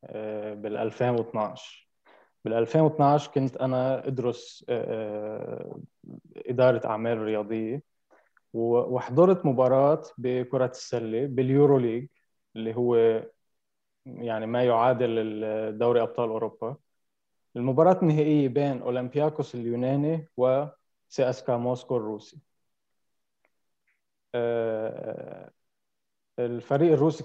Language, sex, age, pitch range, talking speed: Arabic, male, 20-39, 115-140 Hz, 75 wpm